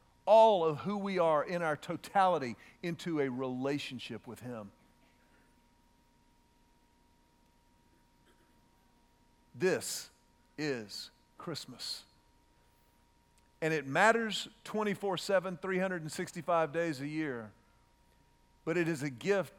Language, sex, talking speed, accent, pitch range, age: English, male, 90 wpm, American, 140-205 Hz, 50-69